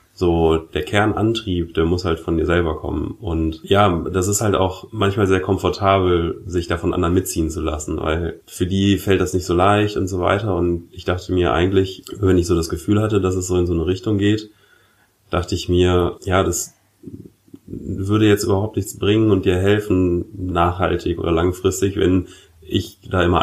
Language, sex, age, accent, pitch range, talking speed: German, male, 30-49, German, 85-95 Hz, 195 wpm